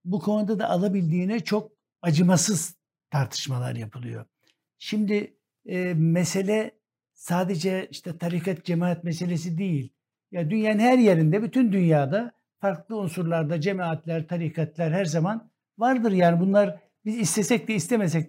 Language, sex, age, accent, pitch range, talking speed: Turkish, male, 60-79, native, 165-200 Hz, 120 wpm